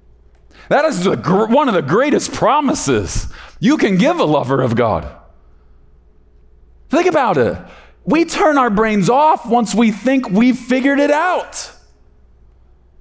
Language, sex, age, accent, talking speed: English, male, 40-59, American, 135 wpm